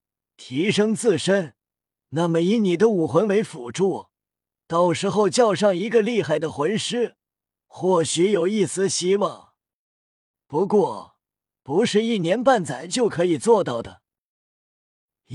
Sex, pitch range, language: male, 160-220 Hz, Chinese